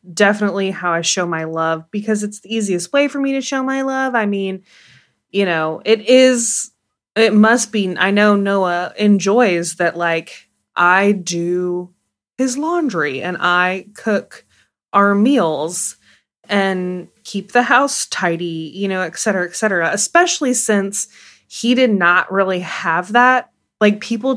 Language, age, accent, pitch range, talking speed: English, 20-39, American, 180-230 Hz, 155 wpm